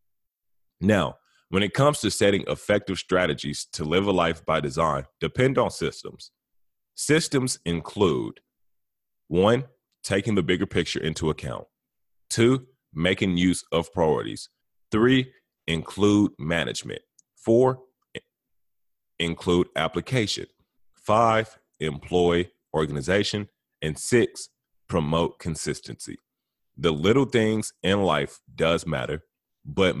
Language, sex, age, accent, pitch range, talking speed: English, male, 30-49, American, 80-105 Hz, 105 wpm